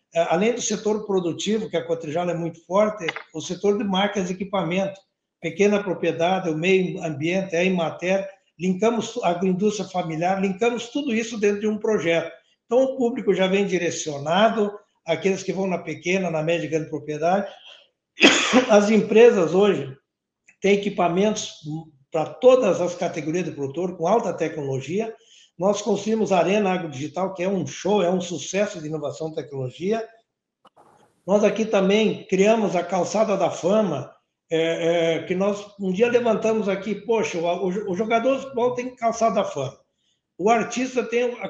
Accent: Brazilian